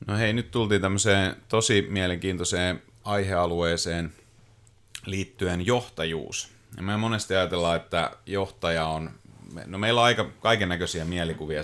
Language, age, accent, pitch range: Finnish, 30-49, native, 85-105 Hz